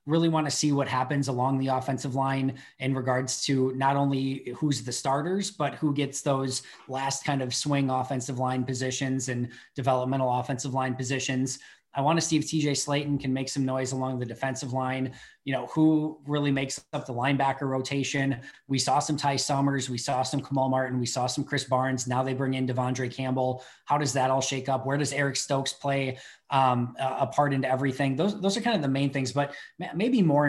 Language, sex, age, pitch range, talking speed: English, male, 20-39, 130-145 Hz, 210 wpm